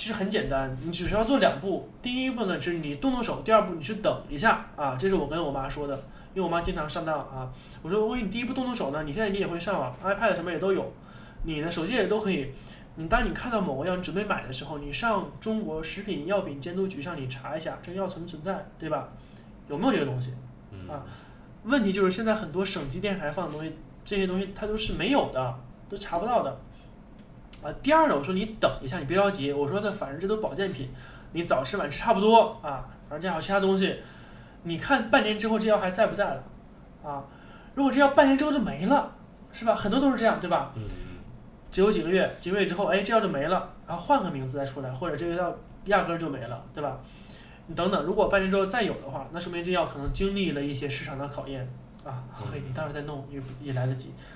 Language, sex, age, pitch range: Chinese, male, 20-39, 145-210 Hz